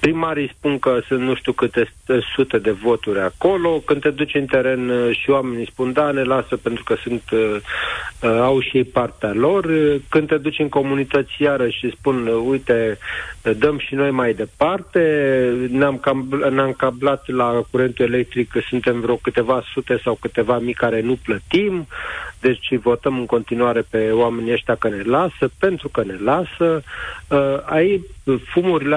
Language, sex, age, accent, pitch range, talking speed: Romanian, male, 40-59, native, 120-145 Hz, 160 wpm